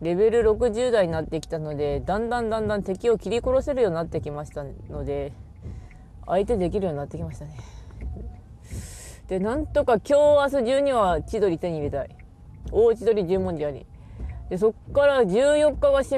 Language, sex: Japanese, female